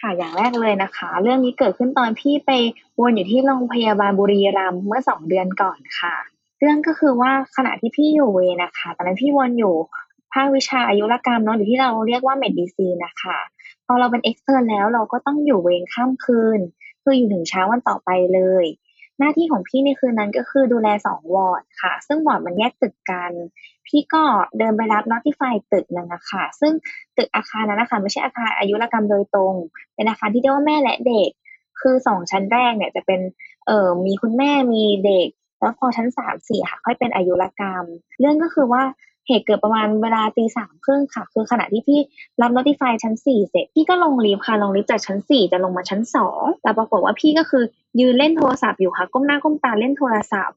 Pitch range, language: 200-270 Hz, Thai